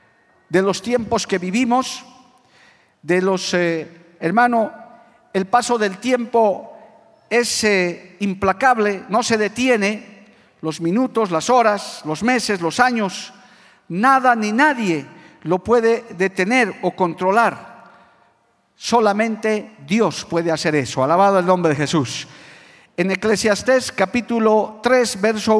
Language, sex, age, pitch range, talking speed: Spanish, male, 50-69, 190-245 Hz, 115 wpm